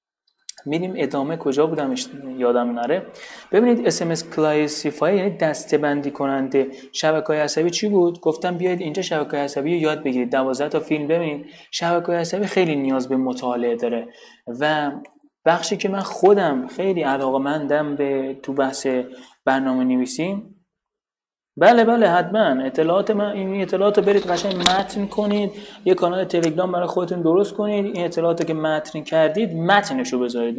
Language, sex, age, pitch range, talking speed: Persian, male, 30-49, 135-180 Hz, 145 wpm